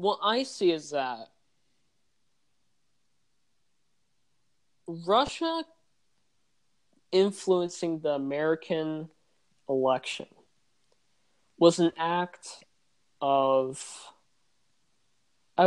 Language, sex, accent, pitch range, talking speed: English, male, American, 135-175 Hz, 55 wpm